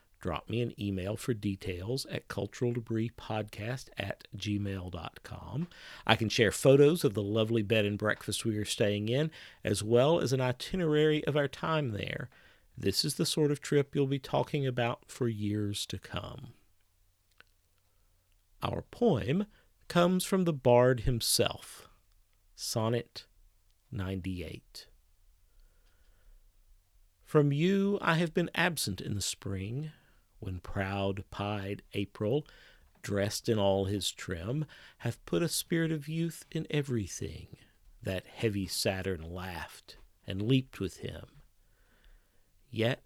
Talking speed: 125 wpm